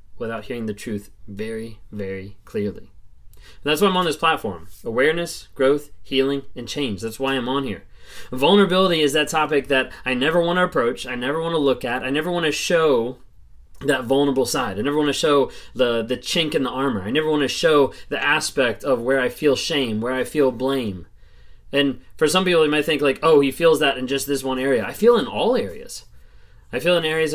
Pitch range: 125-155 Hz